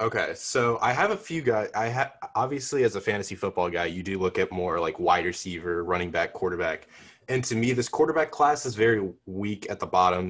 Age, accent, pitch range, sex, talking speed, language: 20-39, American, 95-120 Hz, male, 220 wpm, Spanish